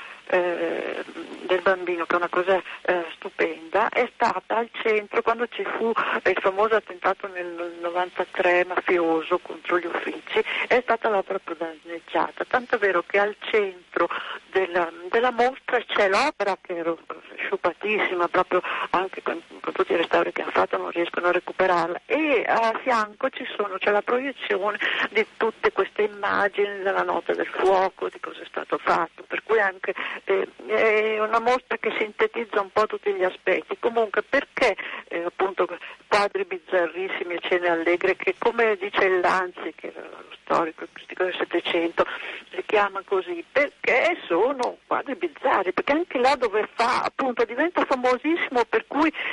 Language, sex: Italian, female